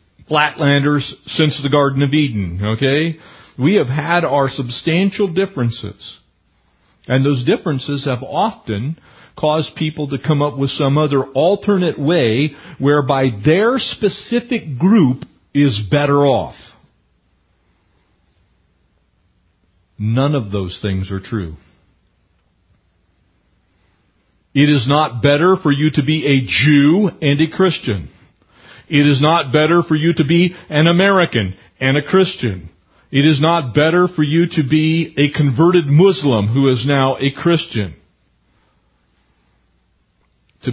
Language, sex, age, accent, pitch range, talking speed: English, male, 50-69, American, 100-150 Hz, 125 wpm